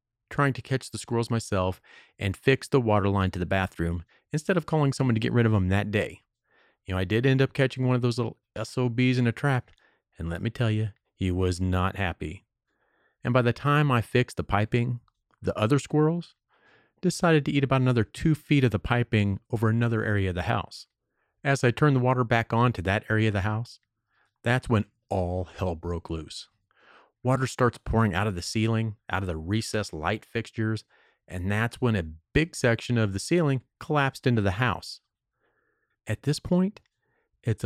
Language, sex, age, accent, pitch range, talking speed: English, male, 40-59, American, 100-130 Hz, 200 wpm